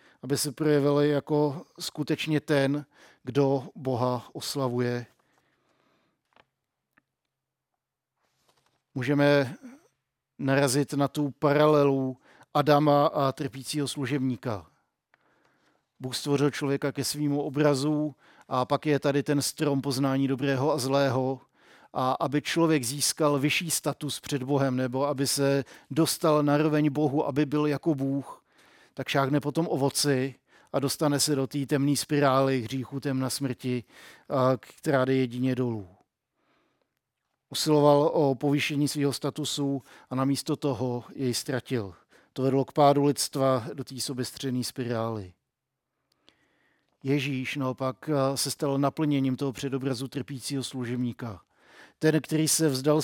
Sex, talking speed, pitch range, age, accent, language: male, 120 wpm, 130-145 Hz, 50-69, native, Czech